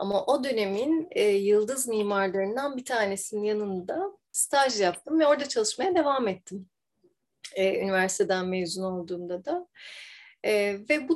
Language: Turkish